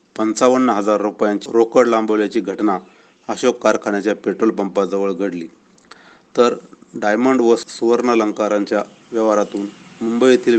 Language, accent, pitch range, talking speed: Marathi, native, 105-115 Hz, 100 wpm